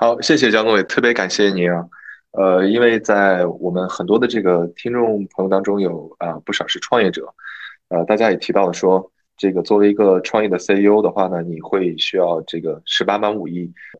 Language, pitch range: Chinese, 90-105 Hz